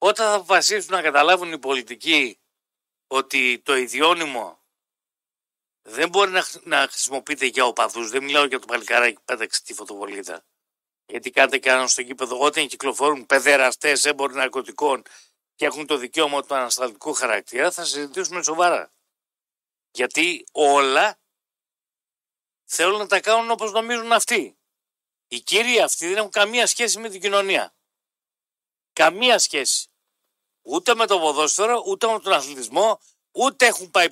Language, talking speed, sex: Greek, 140 wpm, male